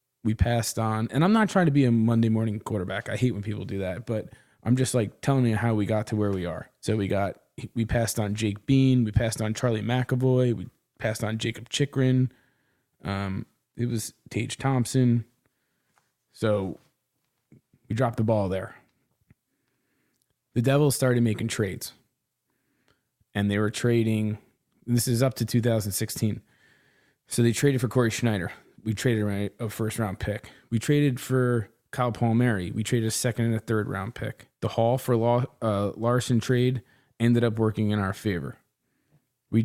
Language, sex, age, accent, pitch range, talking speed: English, male, 20-39, American, 110-130 Hz, 175 wpm